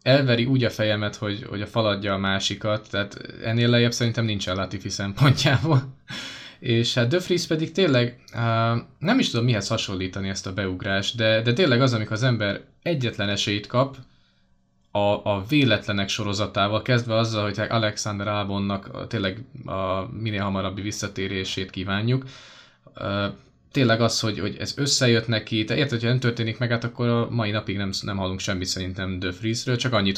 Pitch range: 100-120 Hz